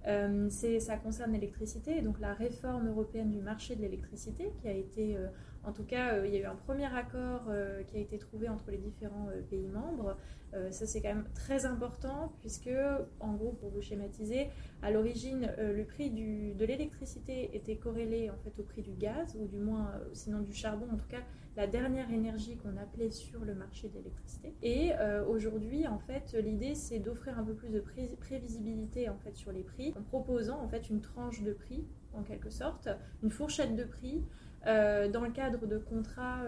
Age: 20-39